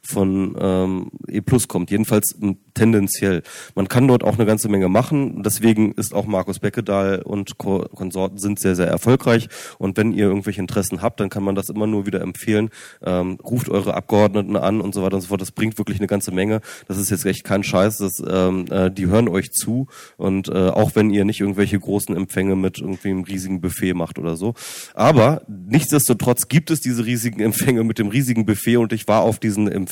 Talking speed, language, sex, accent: 205 wpm, German, male, German